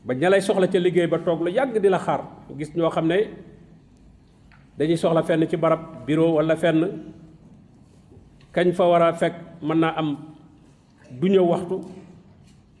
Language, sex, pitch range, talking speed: French, male, 155-185 Hz, 115 wpm